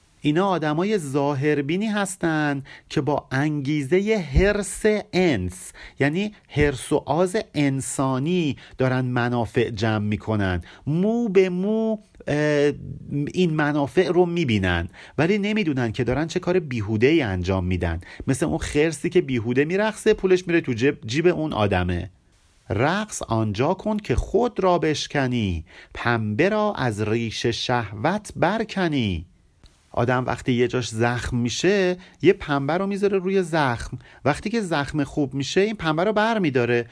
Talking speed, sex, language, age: 135 wpm, male, Persian, 40-59